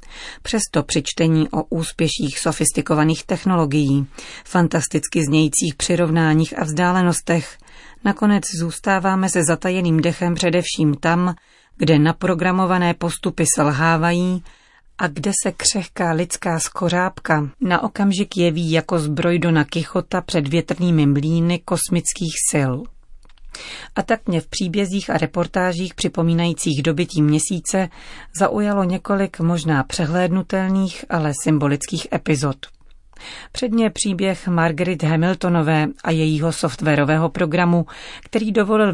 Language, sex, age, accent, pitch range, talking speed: Czech, female, 40-59, native, 155-180 Hz, 105 wpm